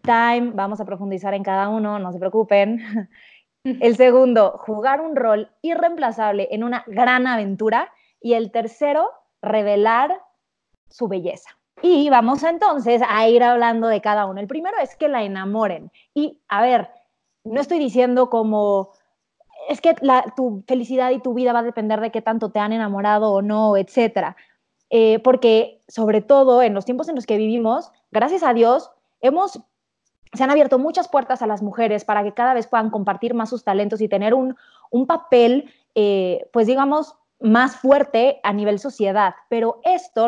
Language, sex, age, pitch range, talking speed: Spanish, female, 20-39, 215-265 Hz, 170 wpm